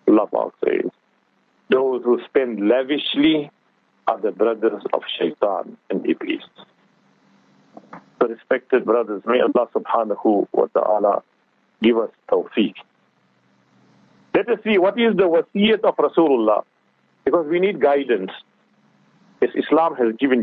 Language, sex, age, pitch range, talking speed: English, male, 50-69, 135-195 Hz, 120 wpm